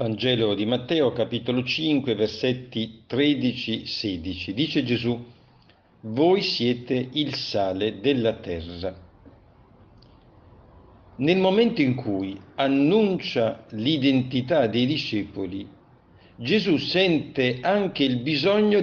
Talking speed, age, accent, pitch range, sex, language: 90 wpm, 50-69, native, 110-145 Hz, male, Italian